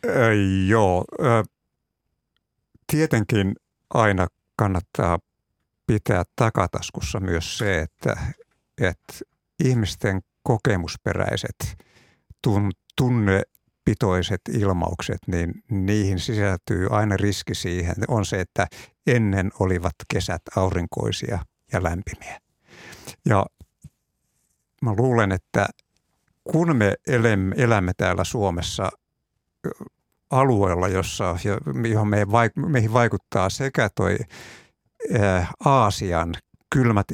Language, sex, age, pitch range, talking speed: Finnish, male, 60-79, 95-115 Hz, 80 wpm